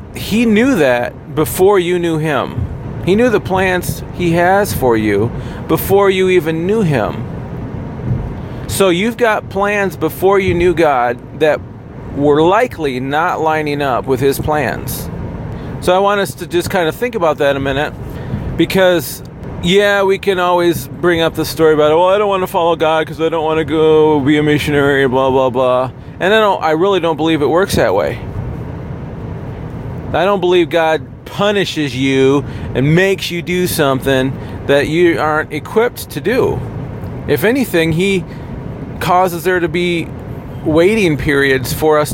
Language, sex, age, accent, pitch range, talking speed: English, male, 40-59, American, 135-185 Hz, 170 wpm